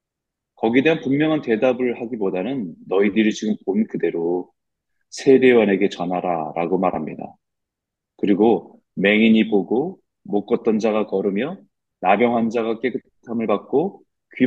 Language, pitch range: Korean, 100-145 Hz